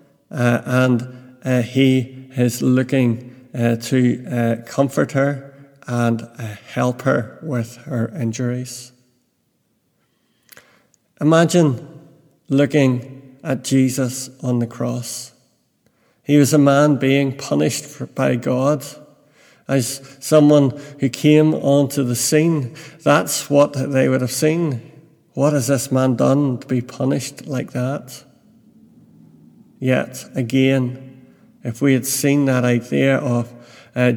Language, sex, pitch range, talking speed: English, male, 125-140 Hz, 115 wpm